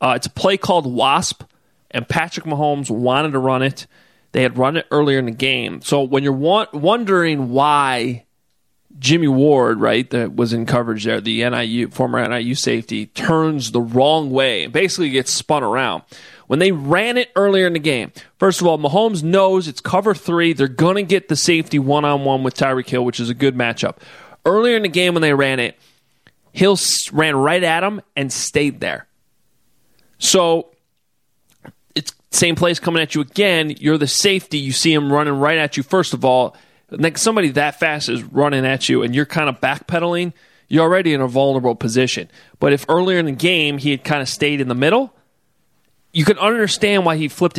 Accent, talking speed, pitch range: American, 195 wpm, 130-170 Hz